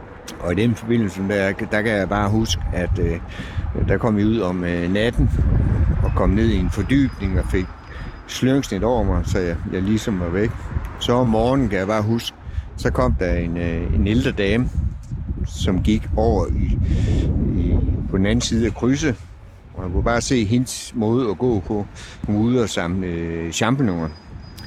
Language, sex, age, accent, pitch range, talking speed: Danish, male, 60-79, native, 90-115 Hz, 180 wpm